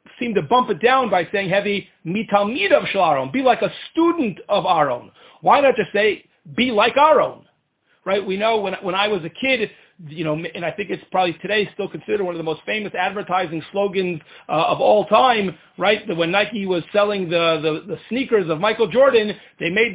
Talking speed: 205 wpm